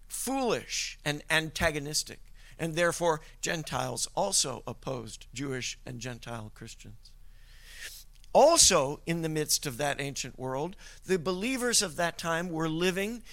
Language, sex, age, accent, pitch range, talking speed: English, male, 50-69, American, 145-185 Hz, 120 wpm